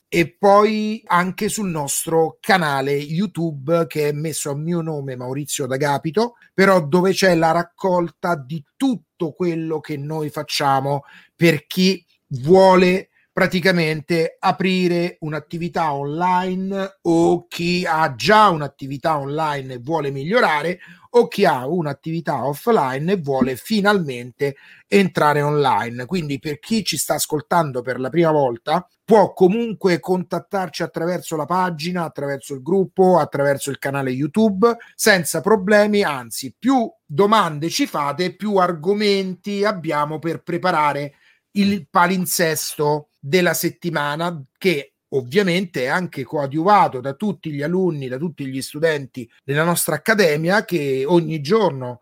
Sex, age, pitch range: male, 30-49, 145-185 Hz